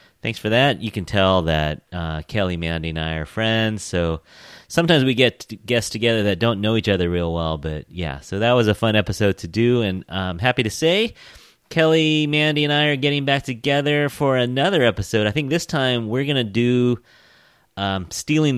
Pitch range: 95-140 Hz